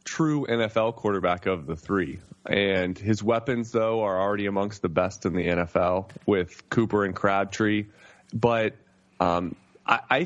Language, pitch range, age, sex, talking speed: English, 100-120 Hz, 20-39, male, 145 wpm